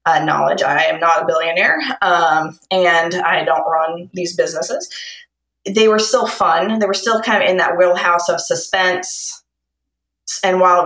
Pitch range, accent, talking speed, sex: 160-195 Hz, American, 170 wpm, female